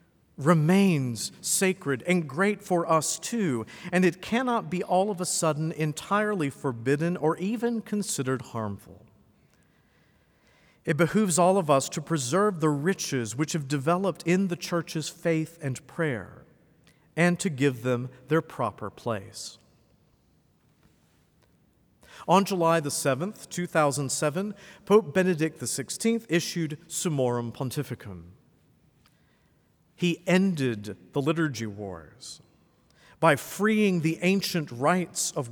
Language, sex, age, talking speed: English, male, 50-69, 115 wpm